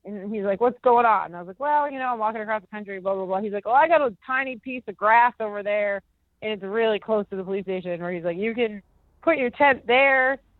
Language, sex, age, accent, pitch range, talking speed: English, female, 30-49, American, 200-260 Hz, 275 wpm